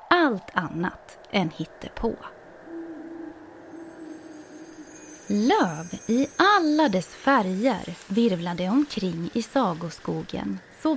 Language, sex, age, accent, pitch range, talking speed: Swedish, female, 20-39, native, 190-290 Hz, 80 wpm